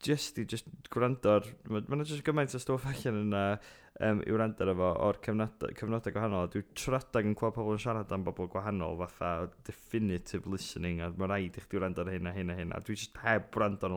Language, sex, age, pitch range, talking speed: English, male, 20-39, 95-110 Hz, 195 wpm